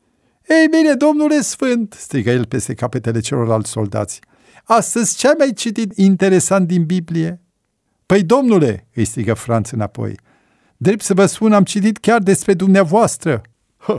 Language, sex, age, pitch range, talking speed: Romanian, male, 50-69, 110-155 Hz, 140 wpm